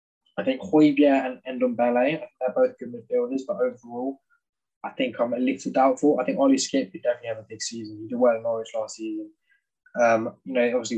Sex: male